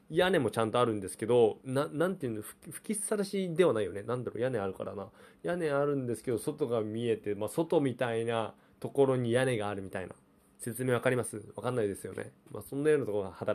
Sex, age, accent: male, 20-39, native